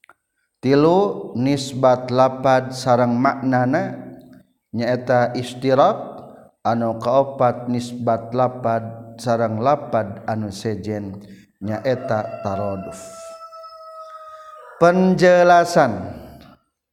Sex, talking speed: male, 65 wpm